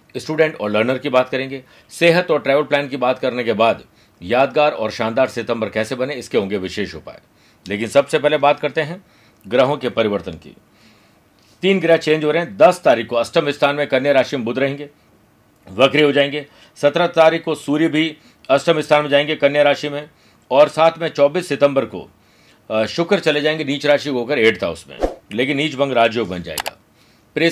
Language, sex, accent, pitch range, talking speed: Hindi, male, native, 120-155 Hz, 195 wpm